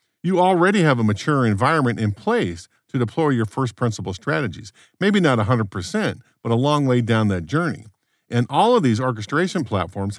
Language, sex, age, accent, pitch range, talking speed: English, male, 50-69, American, 115-165 Hz, 175 wpm